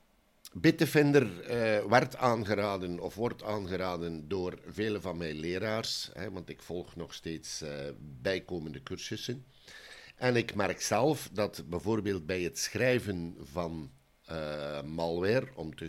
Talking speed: 130 wpm